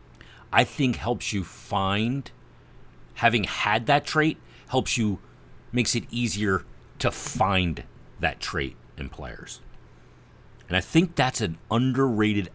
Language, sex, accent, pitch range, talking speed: English, male, American, 80-120 Hz, 125 wpm